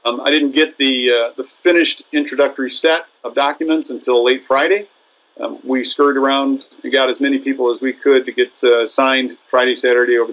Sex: male